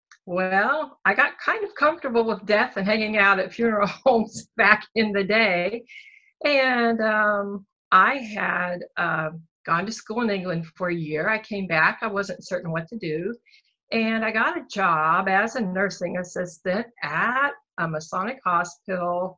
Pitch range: 170-220 Hz